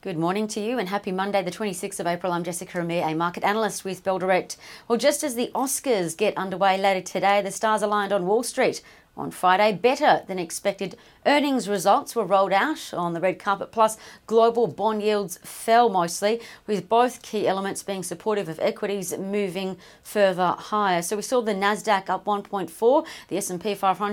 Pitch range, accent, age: 195-245 Hz, Australian, 40-59